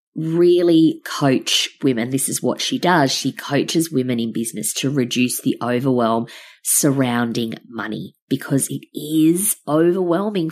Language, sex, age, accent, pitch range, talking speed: English, female, 20-39, Australian, 125-160 Hz, 130 wpm